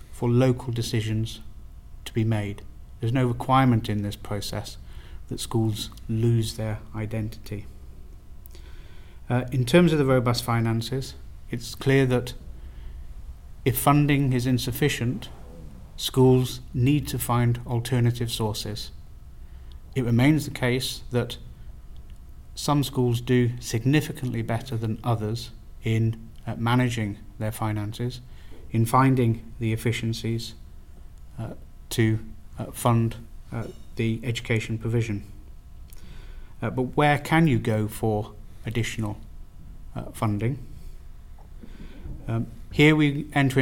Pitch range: 100-125 Hz